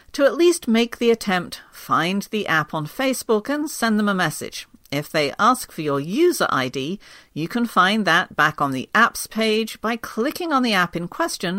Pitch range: 170-235 Hz